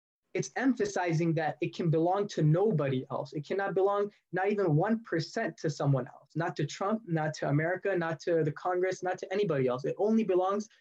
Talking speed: 195 wpm